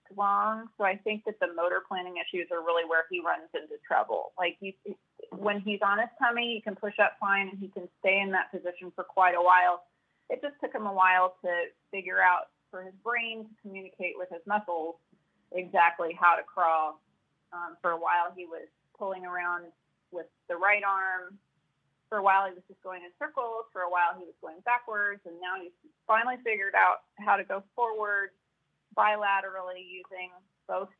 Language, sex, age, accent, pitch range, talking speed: English, female, 30-49, American, 180-205 Hz, 195 wpm